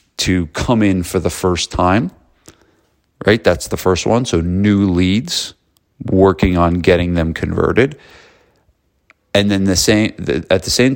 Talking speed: 155 wpm